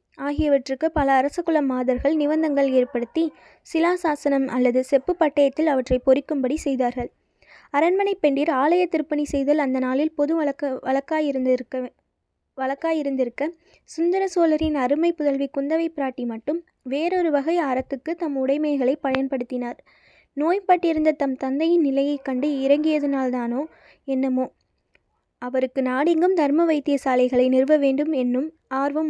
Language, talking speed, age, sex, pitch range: Tamil, 110 wpm, 20-39, female, 265-315 Hz